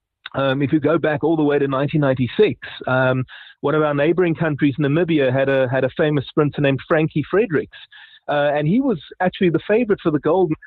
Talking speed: 200 wpm